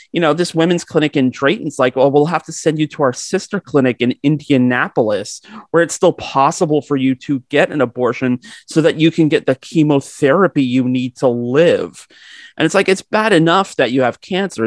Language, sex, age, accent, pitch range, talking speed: English, male, 30-49, American, 125-160 Hz, 210 wpm